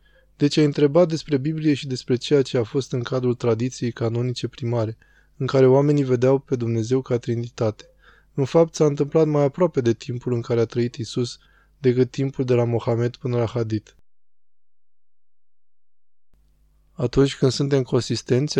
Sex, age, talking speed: male, 20-39, 160 wpm